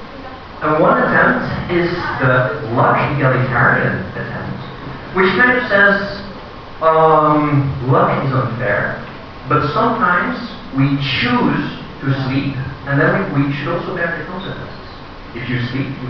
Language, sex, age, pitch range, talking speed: Italian, male, 40-59, 125-165 Hz, 130 wpm